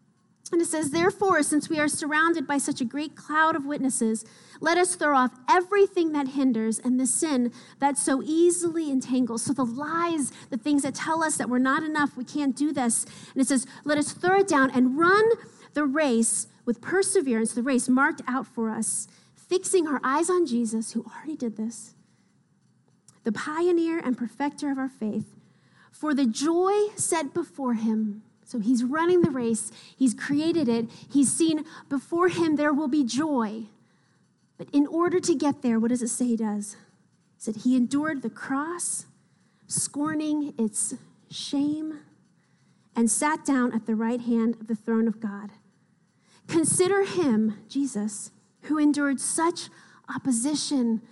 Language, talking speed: English, 170 wpm